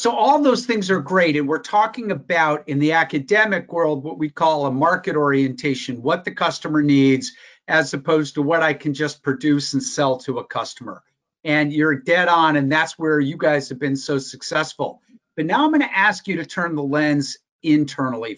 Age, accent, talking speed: 50-69, American, 200 wpm